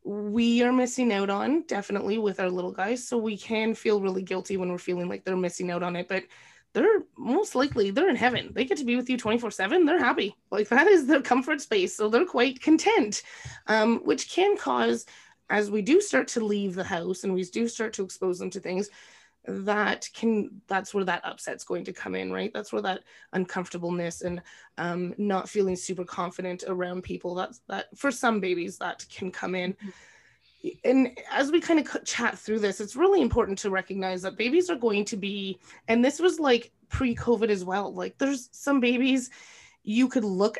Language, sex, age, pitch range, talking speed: English, female, 20-39, 195-265 Hz, 205 wpm